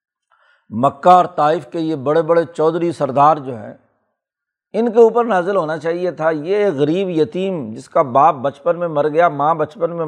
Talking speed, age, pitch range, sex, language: 185 wpm, 60-79, 155-215 Hz, male, Urdu